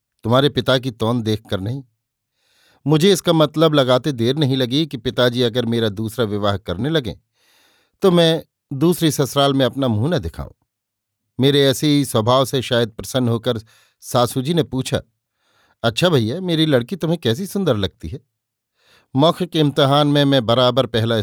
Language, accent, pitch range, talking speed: Hindi, native, 115-150 Hz, 165 wpm